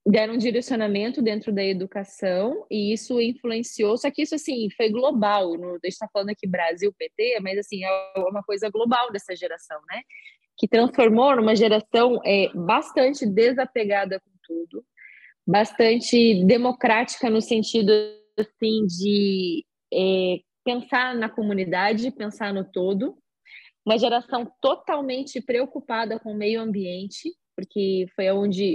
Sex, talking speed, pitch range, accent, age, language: female, 130 wpm, 195-235 Hz, Brazilian, 20-39, Portuguese